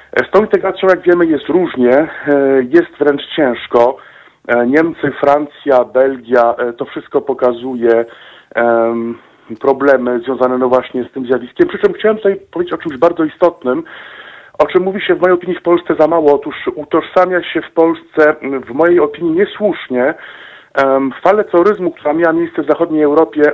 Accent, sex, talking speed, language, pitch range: native, male, 155 wpm, Polish, 130-165 Hz